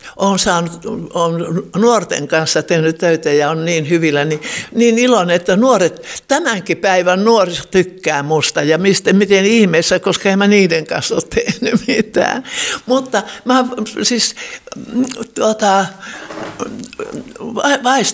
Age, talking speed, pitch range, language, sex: 60-79, 120 wpm, 165-215 Hz, Finnish, male